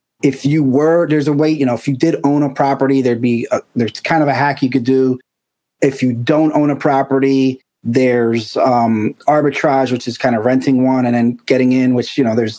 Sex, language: male, English